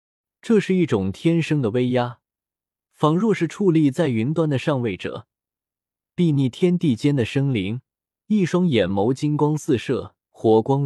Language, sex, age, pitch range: Chinese, male, 20-39, 110-165 Hz